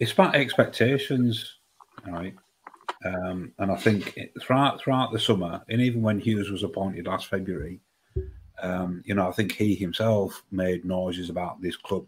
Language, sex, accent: English, male, British